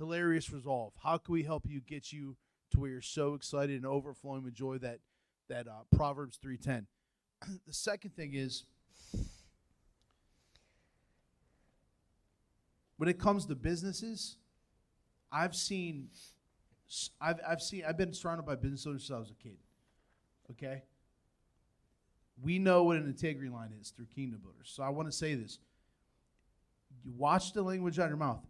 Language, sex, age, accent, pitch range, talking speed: English, male, 30-49, American, 125-165 Hz, 155 wpm